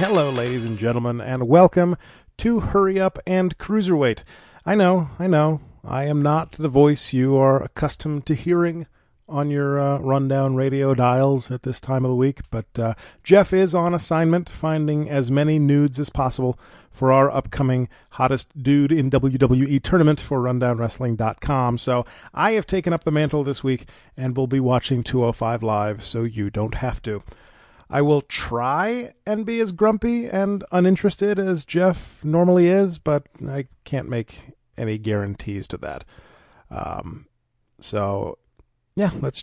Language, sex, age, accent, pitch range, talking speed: English, male, 40-59, American, 125-165 Hz, 160 wpm